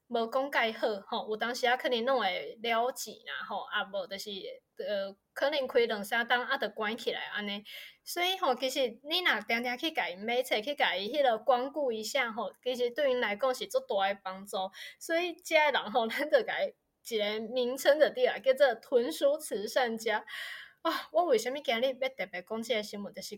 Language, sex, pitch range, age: Chinese, female, 230-300 Hz, 20-39